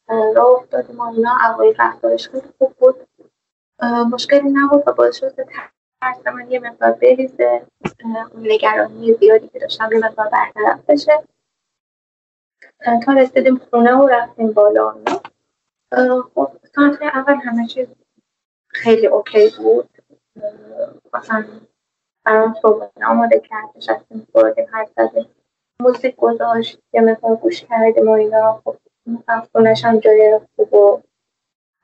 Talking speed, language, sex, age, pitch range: 100 wpm, Persian, female, 20-39, 225-270 Hz